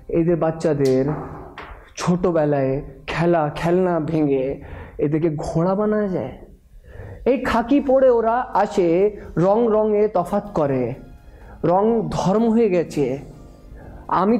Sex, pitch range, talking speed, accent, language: male, 150-195 Hz, 100 wpm, native, Bengali